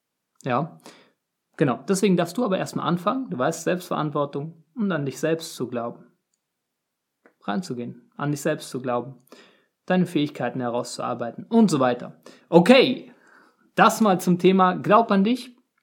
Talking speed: 140 wpm